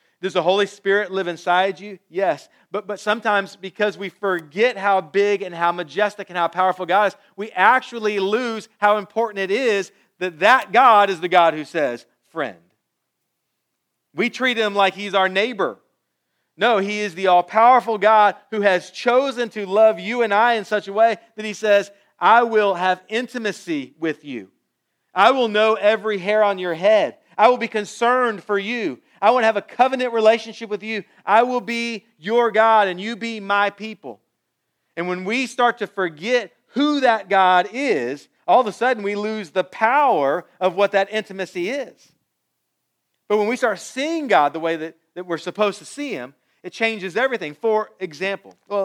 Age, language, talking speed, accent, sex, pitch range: 40-59, English, 185 wpm, American, male, 185-225 Hz